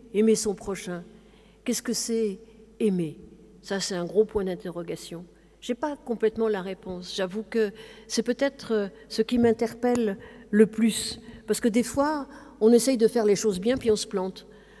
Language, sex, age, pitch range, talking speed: French, female, 50-69, 195-235 Hz, 175 wpm